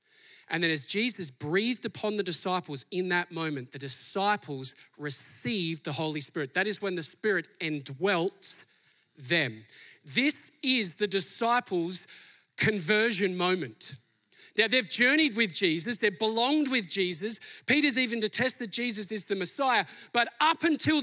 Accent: Australian